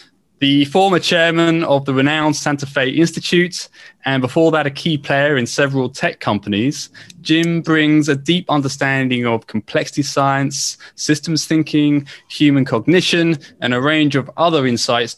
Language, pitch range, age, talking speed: English, 130-165 Hz, 20-39, 145 wpm